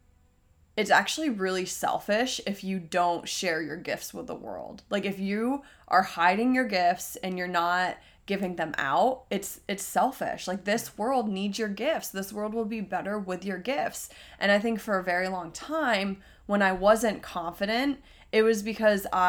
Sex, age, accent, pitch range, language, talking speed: female, 20-39, American, 175-205 Hz, English, 180 wpm